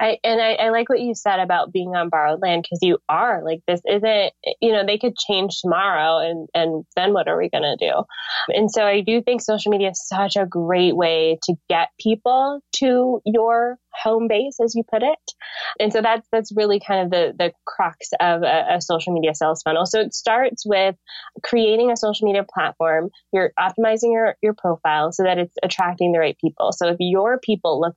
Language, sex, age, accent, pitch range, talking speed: English, female, 20-39, American, 175-220 Hz, 210 wpm